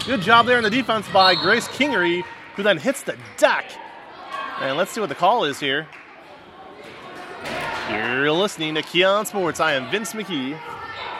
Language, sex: English, male